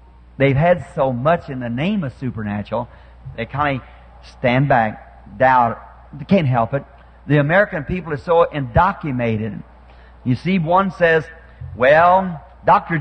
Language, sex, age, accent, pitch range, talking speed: English, male, 50-69, American, 130-180 Hz, 140 wpm